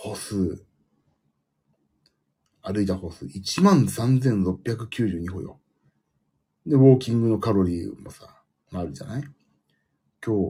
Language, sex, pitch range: Japanese, male, 95-140 Hz